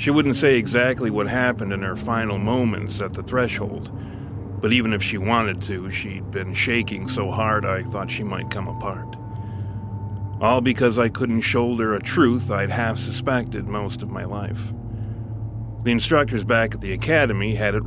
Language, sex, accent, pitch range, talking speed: English, male, American, 105-120 Hz, 170 wpm